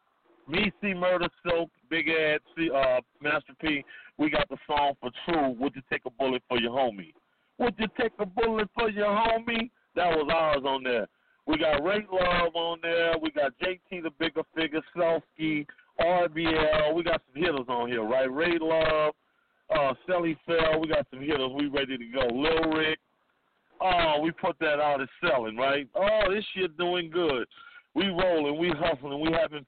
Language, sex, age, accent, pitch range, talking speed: English, male, 40-59, American, 150-200 Hz, 185 wpm